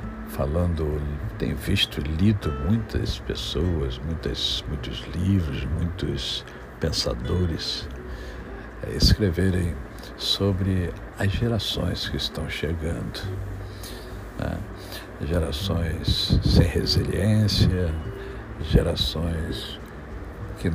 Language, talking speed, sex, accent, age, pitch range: Portuguese, 70 wpm, male, Brazilian, 60-79, 75-100 Hz